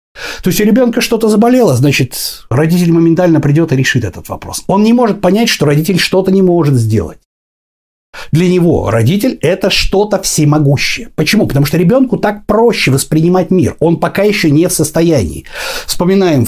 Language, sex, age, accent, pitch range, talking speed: Russian, male, 60-79, native, 140-195 Hz, 165 wpm